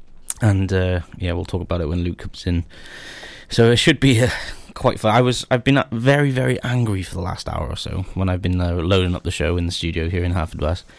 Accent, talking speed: British, 250 wpm